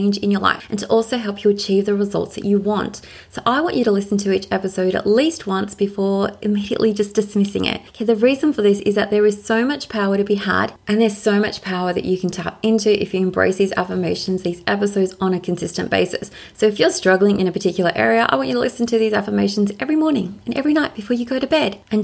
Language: English